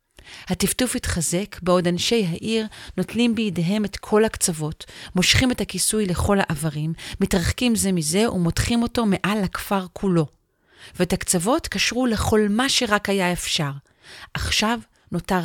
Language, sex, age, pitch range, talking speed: Hebrew, female, 40-59, 160-200 Hz, 130 wpm